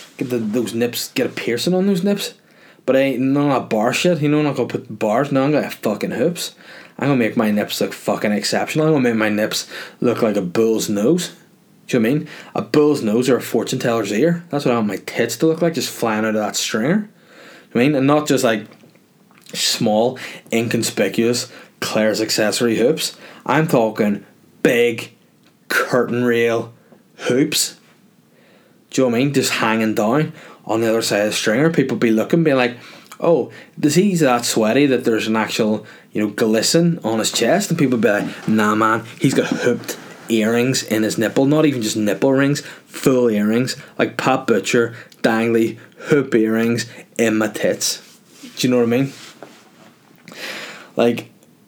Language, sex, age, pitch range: English, male, 20-39, 110-150 Hz